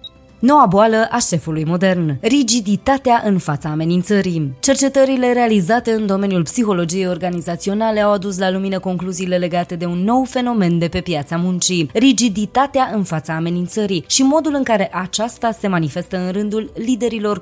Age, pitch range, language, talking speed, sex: 20-39, 175-235 Hz, Romanian, 150 wpm, female